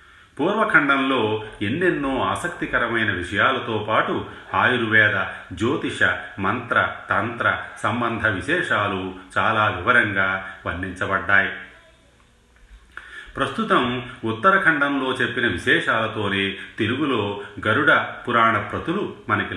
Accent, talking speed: native, 65 wpm